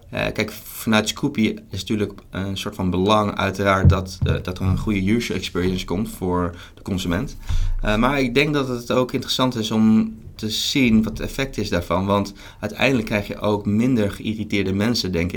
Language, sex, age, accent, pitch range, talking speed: Dutch, male, 20-39, Dutch, 95-110 Hz, 195 wpm